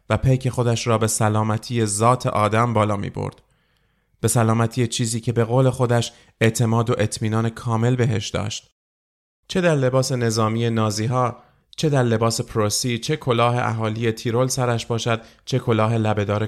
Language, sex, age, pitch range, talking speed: Persian, male, 30-49, 110-125 Hz, 150 wpm